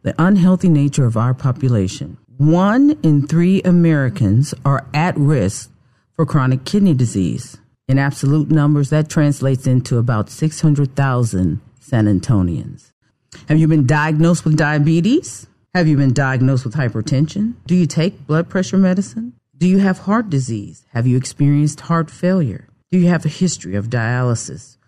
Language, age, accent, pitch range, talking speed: English, 40-59, American, 125-160 Hz, 150 wpm